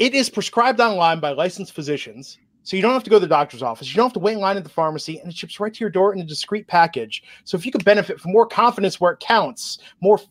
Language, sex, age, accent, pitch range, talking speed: English, male, 30-49, American, 155-210 Hz, 290 wpm